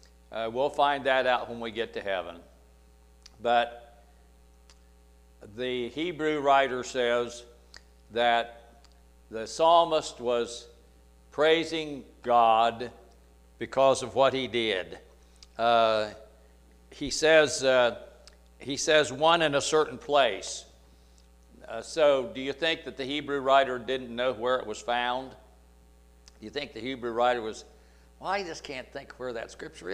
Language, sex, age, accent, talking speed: English, male, 60-79, American, 130 wpm